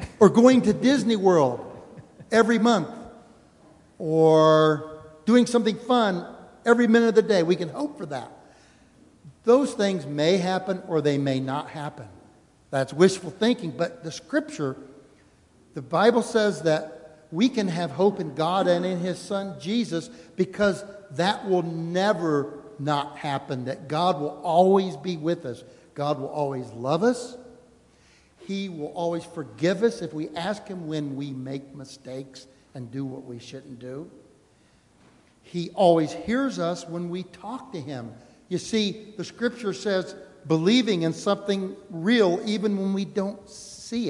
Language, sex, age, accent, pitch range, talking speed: English, male, 60-79, American, 150-215 Hz, 150 wpm